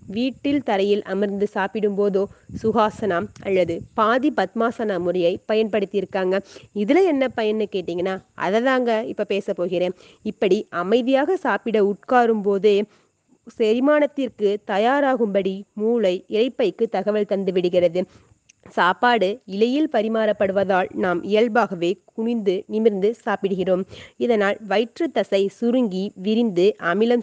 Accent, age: native, 30-49